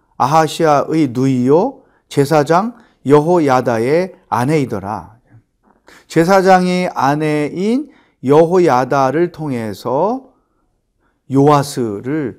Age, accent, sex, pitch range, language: 40-59, native, male, 130-190 Hz, Korean